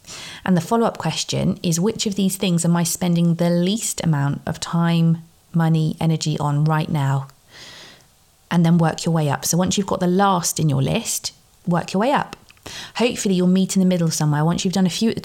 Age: 30-49